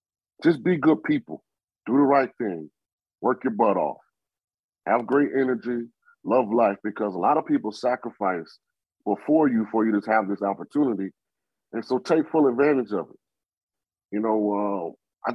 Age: 30-49